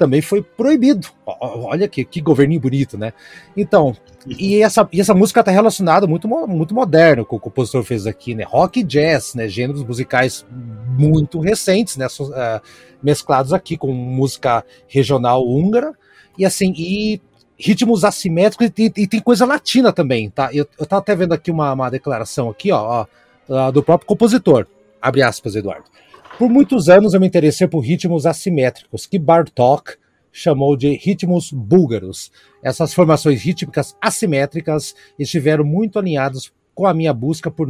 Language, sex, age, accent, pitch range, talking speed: Portuguese, male, 30-49, Brazilian, 140-195 Hz, 150 wpm